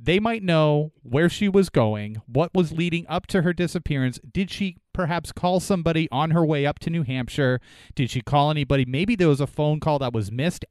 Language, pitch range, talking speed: English, 130-175 Hz, 220 wpm